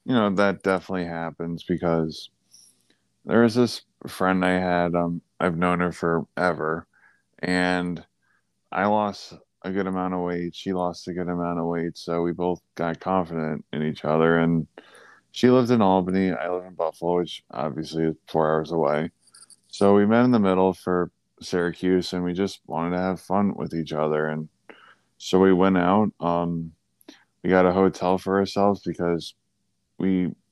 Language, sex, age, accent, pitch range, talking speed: English, male, 20-39, American, 85-95 Hz, 170 wpm